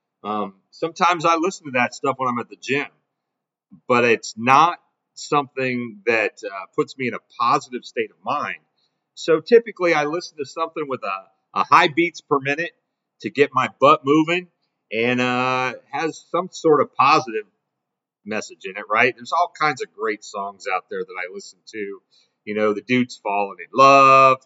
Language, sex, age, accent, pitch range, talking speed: English, male, 40-59, American, 125-185 Hz, 180 wpm